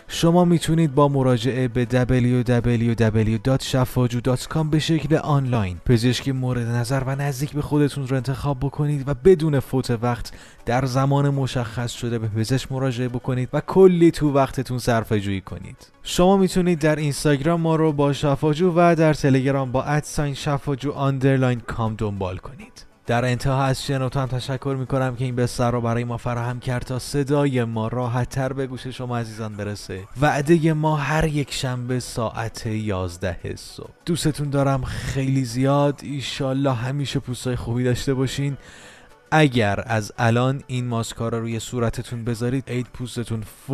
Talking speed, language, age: 150 wpm, Persian, 20-39